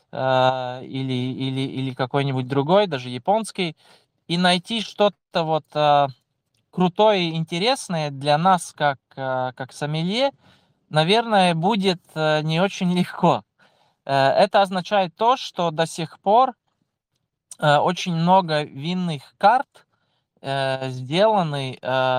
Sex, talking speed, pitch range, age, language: male, 95 wpm, 140-185 Hz, 20-39, Russian